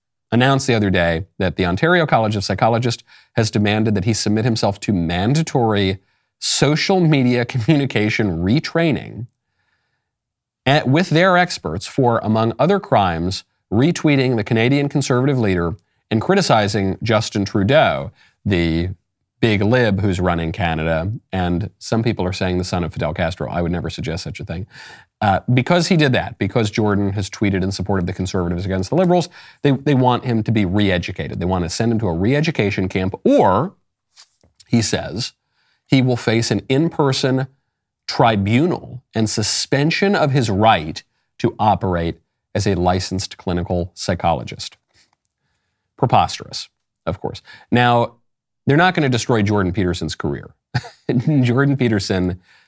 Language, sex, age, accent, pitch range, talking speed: English, male, 40-59, American, 95-130 Hz, 145 wpm